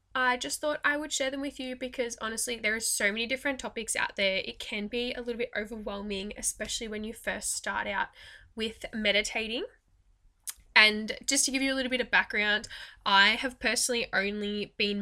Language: English